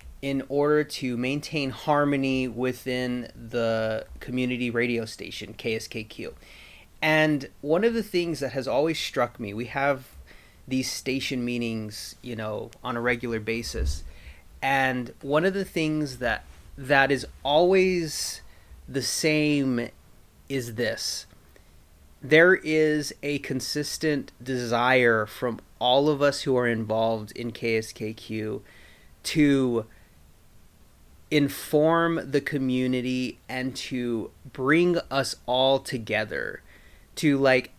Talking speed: 115 wpm